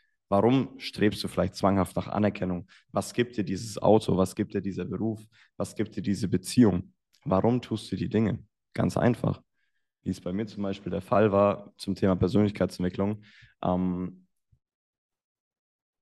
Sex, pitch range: male, 95-110 Hz